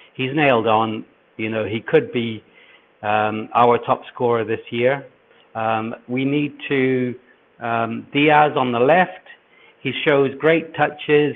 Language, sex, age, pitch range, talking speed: English, male, 60-79, 115-145 Hz, 145 wpm